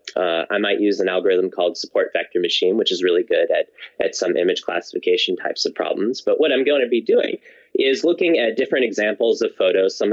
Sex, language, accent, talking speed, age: male, English, American, 220 wpm, 30-49